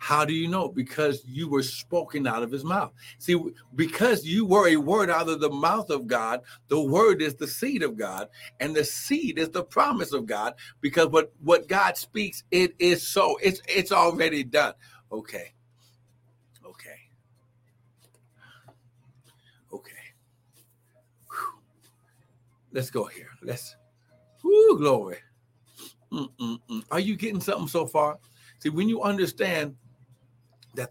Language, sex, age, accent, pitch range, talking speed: English, male, 60-79, American, 125-165 Hz, 145 wpm